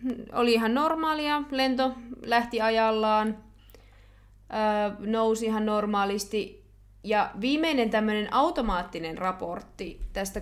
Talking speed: 85 wpm